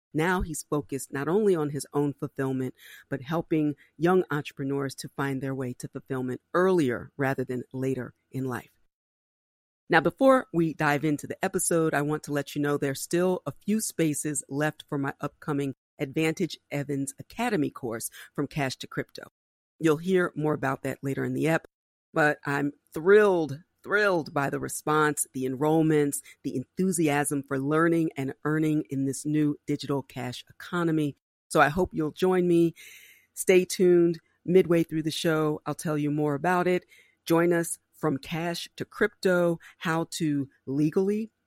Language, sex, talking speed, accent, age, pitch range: English, female, 165 wpm, American, 40-59, 140-170 Hz